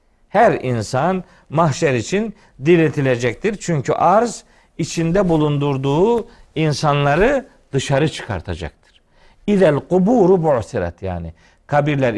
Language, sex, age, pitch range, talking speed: Turkish, male, 50-69, 125-185 Hz, 80 wpm